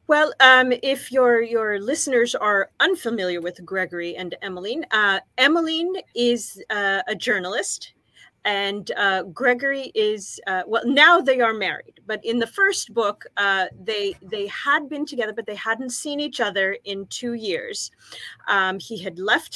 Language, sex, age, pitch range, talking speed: English, female, 30-49, 200-265 Hz, 160 wpm